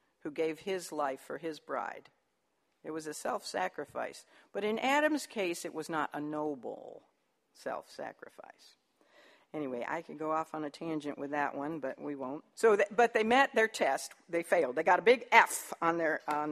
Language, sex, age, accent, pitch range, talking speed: English, female, 60-79, American, 170-260 Hz, 190 wpm